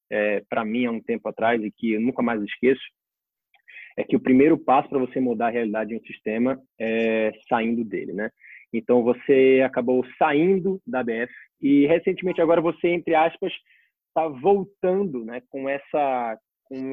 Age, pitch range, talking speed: 20-39, 115-150 Hz, 170 wpm